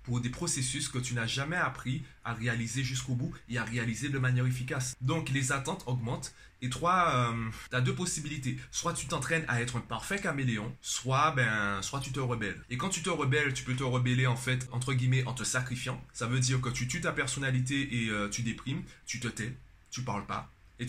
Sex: male